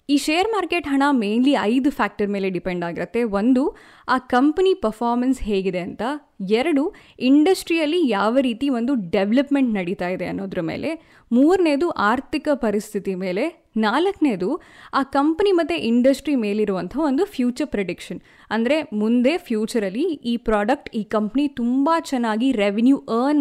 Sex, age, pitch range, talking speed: female, 10-29, 205-285 Hz, 130 wpm